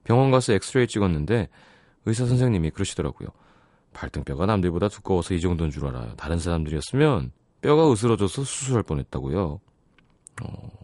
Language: Korean